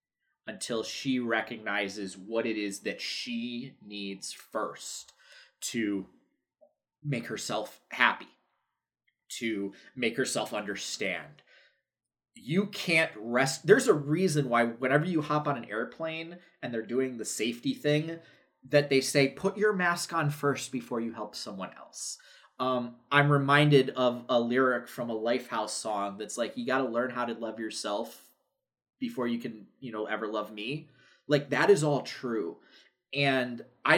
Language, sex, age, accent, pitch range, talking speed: English, male, 20-39, American, 110-140 Hz, 150 wpm